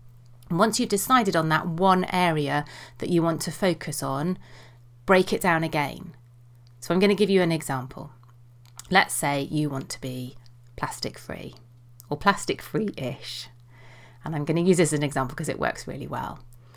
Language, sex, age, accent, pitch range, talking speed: English, female, 30-49, British, 125-185 Hz, 180 wpm